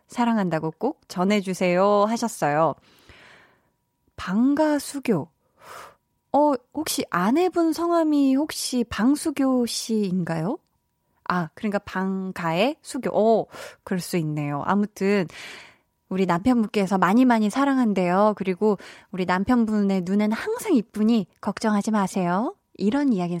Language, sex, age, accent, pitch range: Korean, female, 20-39, native, 185-255 Hz